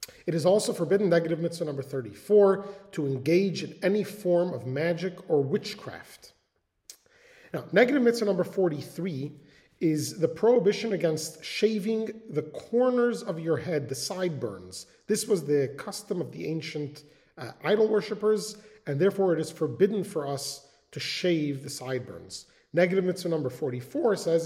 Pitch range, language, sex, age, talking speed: 145-200 Hz, English, male, 40-59, 145 wpm